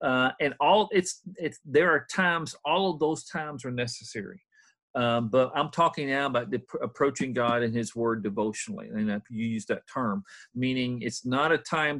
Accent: American